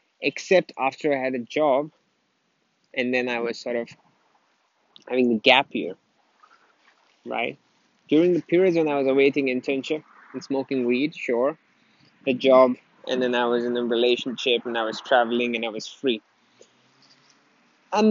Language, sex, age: English, male, 20-39